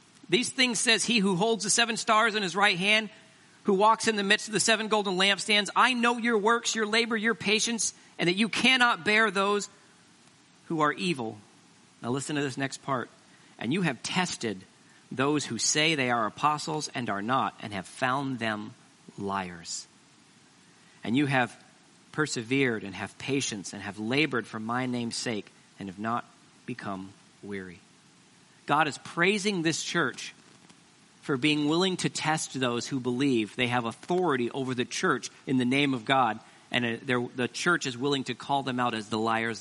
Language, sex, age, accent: English, male, 40-59, American